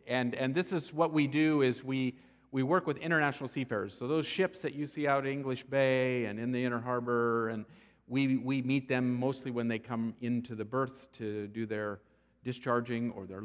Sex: male